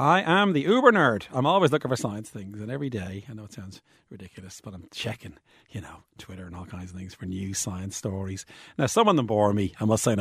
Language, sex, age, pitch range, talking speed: English, male, 40-59, 100-135 Hz, 260 wpm